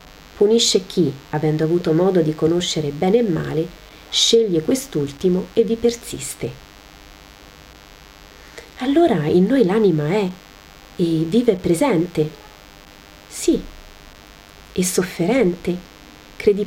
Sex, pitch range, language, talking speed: female, 140-195 Hz, Italian, 95 wpm